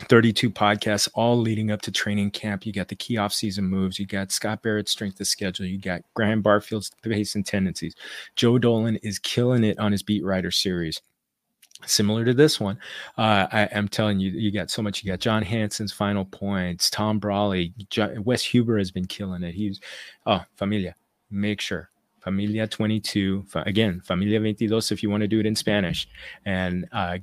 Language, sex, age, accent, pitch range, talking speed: English, male, 30-49, American, 100-115 Hz, 190 wpm